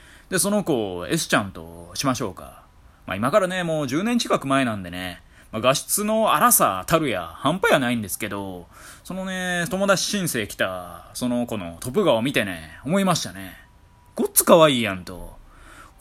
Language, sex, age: Japanese, male, 20-39